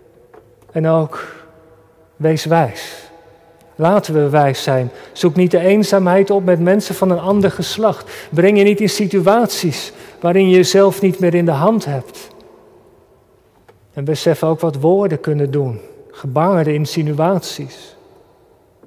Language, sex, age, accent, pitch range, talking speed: Dutch, male, 40-59, Dutch, 160-195 Hz, 135 wpm